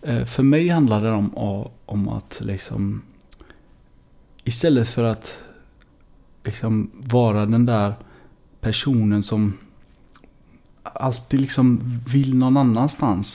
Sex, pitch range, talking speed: male, 110-125 Hz, 100 wpm